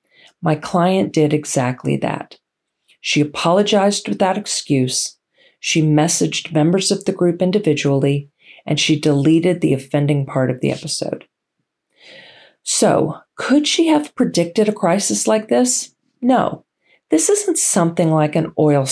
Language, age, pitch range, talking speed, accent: English, 40-59, 150-210 Hz, 130 wpm, American